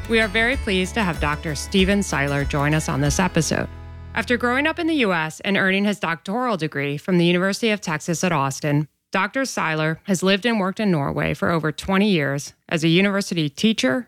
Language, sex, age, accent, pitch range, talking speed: English, female, 30-49, American, 155-200 Hz, 205 wpm